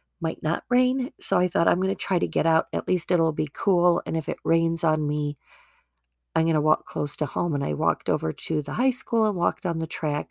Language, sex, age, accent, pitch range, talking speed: English, female, 40-59, American, 150-190 Hz, 255 wpm